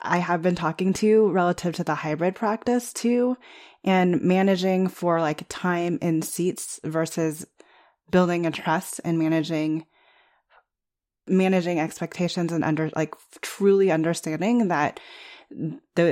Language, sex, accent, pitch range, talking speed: English, female, American, 155-195 Hz, 125 wpm